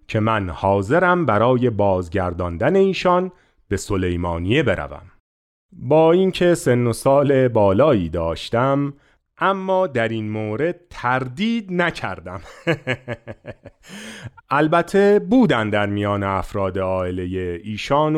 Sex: male